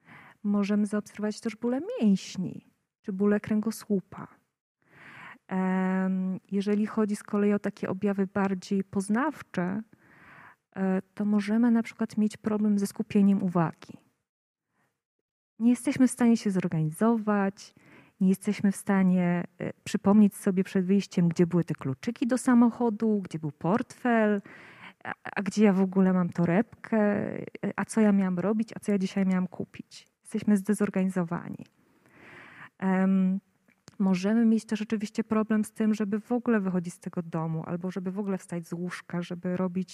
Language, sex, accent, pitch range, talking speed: Polish, female, native, 185-220 Hz, 140 wpm